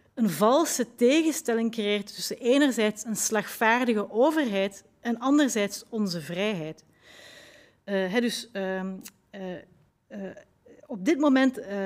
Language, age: Dutch, 40-59